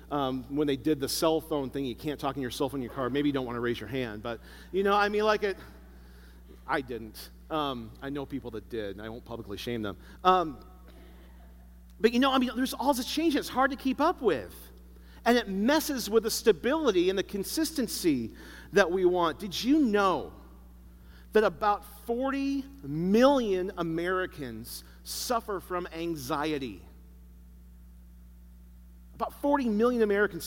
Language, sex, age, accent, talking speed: English, male, 40-59, American, 175 wpm